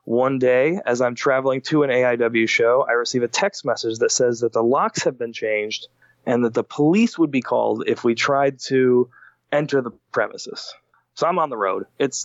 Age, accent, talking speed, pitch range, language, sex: 20-39, American, 205 wpm, 110-140 Hz, English, male